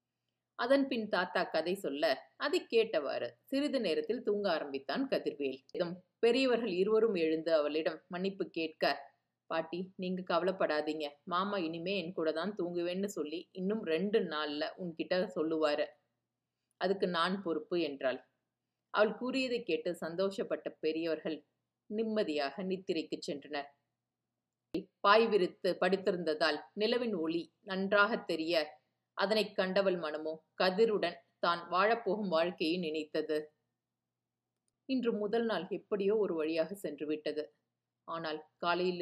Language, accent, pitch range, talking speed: Tamil, native, 155-200 Hz, 110 wpm